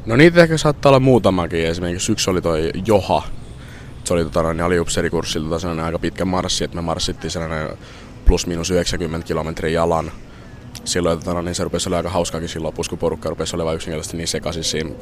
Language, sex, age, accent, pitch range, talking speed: Finnish, male, 20-39, native, 80-90 Hz, 175 wpm